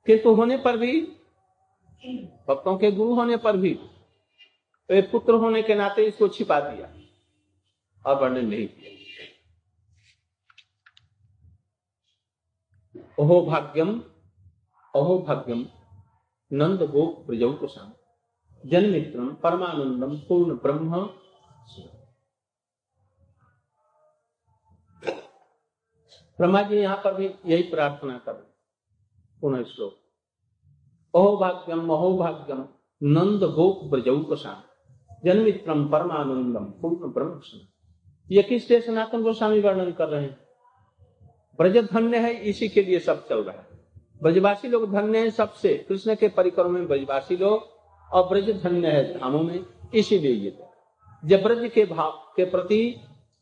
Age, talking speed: 50-69, 100 wpm